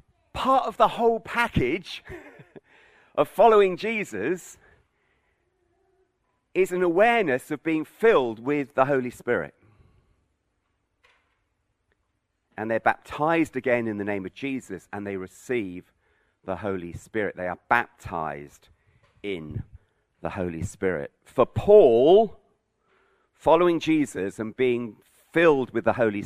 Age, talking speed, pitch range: 40-59, 115 wpm, 105-155 Hz